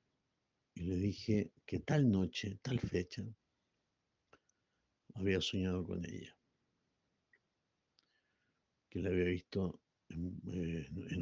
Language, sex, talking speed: Spanish, male, 95 wpm